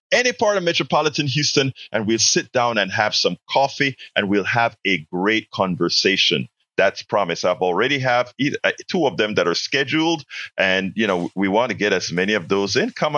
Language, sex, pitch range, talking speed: English, male, 120-170 Hz, 205 wpm